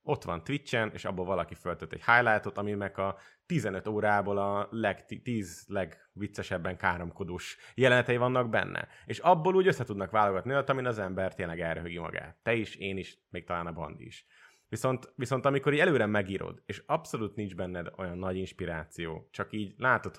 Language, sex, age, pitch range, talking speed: English, male, 30-49, 90-125 Hz, 165 wpm